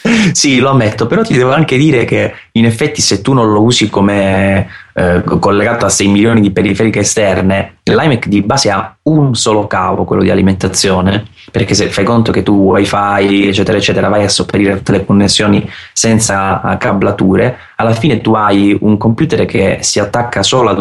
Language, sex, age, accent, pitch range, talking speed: Italian, male, 20-39, native, 100-110 Hz, 180 wpm